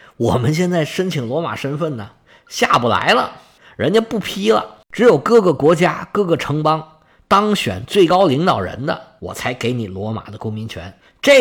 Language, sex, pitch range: Chinese, male, 120-190 Hz